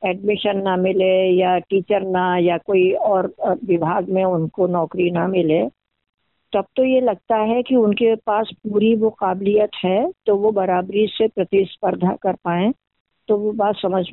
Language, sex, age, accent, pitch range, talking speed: Hindi, female, 50-69, native, 190-245 Hz, 160 wpm